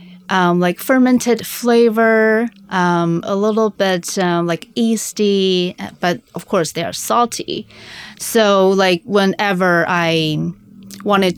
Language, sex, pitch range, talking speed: English, female, 170-200 Hz, 115 wpm